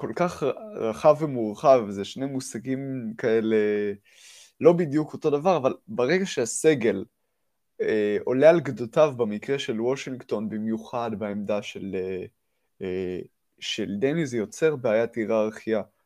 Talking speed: 115 wpm